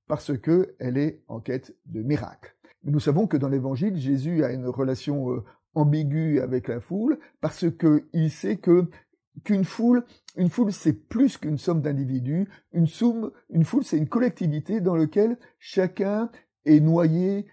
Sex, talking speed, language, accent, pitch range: male, 160 wpm, French, French, 140-185 Hz